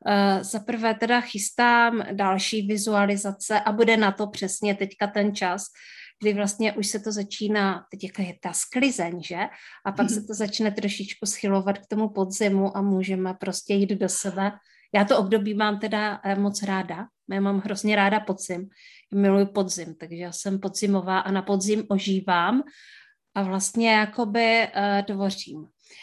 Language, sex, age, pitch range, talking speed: Czech, female, 30-49, 195-215 Hz, 160 wpm